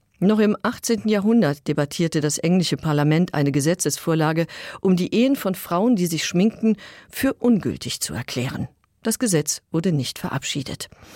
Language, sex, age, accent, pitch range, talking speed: German, female, 50-69, German, 150-215 Hz, 145 wpm